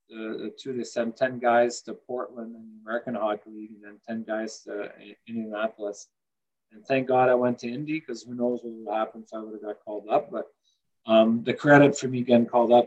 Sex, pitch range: male, 110-125 Hz